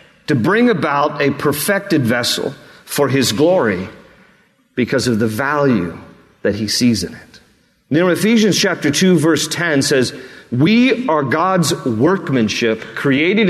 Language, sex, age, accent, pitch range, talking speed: English, male, 40-59, American, 145-205 Hz, 140 wpm